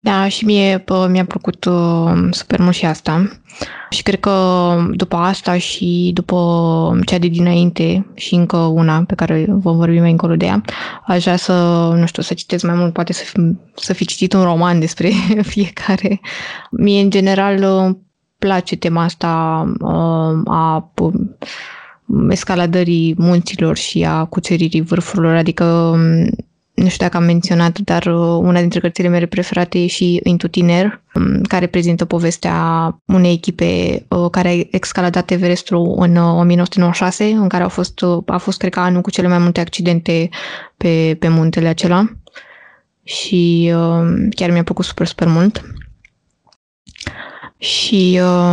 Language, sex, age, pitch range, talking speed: Romanian, female, 20-39, 170-190 Hz, 145 wpm